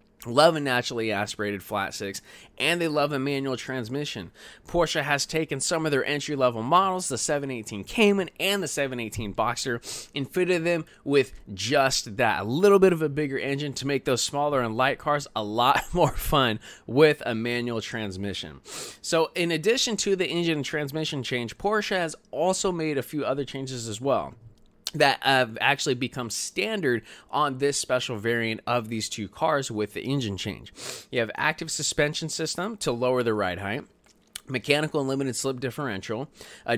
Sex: male